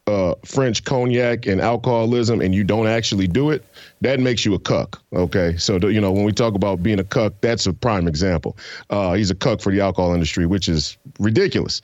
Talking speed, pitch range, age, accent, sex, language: 215 wpm, 100-120 Hz, 40-59, American, male, English